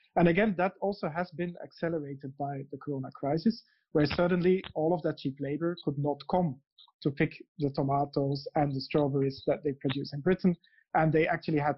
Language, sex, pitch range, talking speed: English, male, 145-180 Hz, 190 wpm